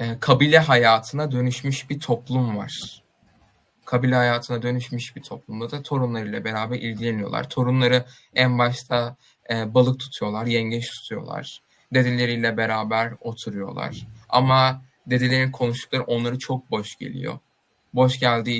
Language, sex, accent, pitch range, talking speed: Turkish, male, native, 115-130 Hz, 110 wpm